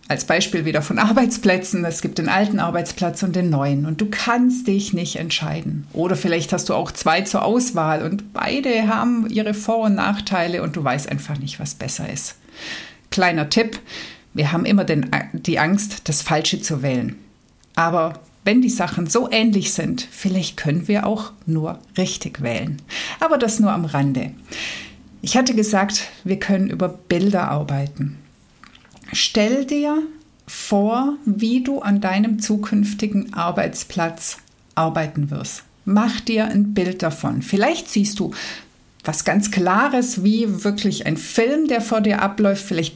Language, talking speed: German, 155 wpm